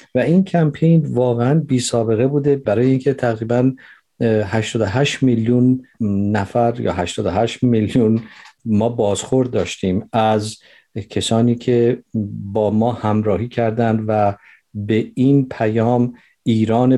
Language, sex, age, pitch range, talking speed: Persian, male, 50-69, 110-130 Hz, 110 wpm